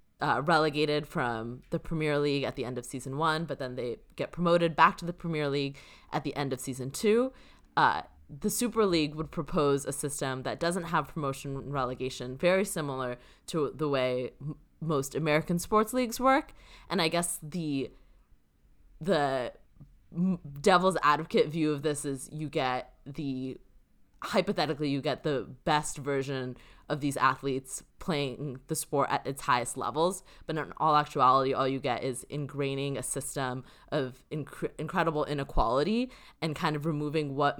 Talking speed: 165 wpm